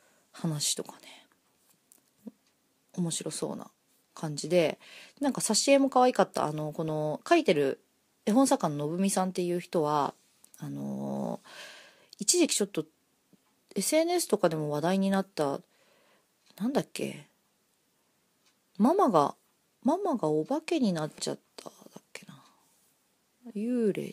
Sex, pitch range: female, 165-260 Hz